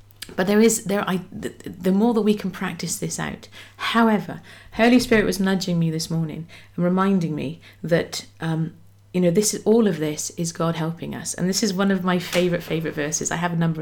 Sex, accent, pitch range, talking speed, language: female, British, 160-205 Hz, 215 wpm, English